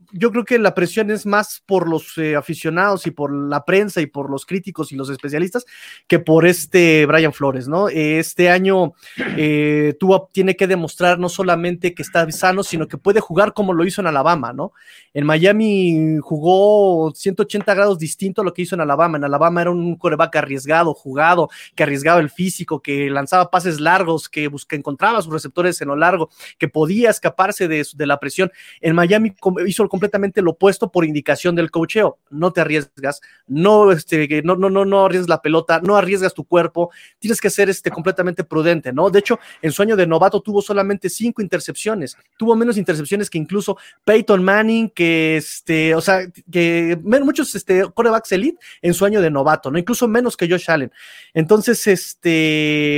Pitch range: 160-200 Hz